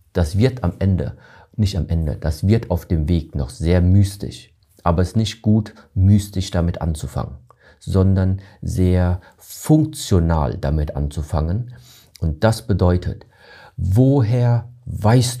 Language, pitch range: German, 85-110 Hz